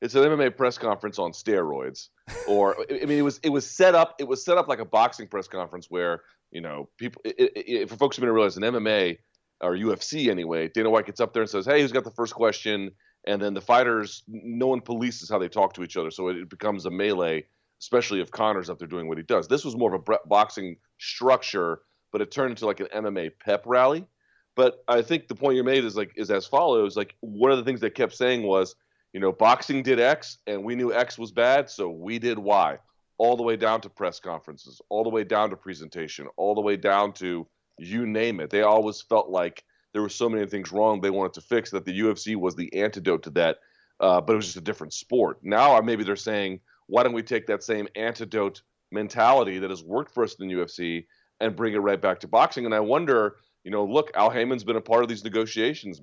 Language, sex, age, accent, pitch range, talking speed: English, male, 30-49, American, 100-120 Hz, 240 wpm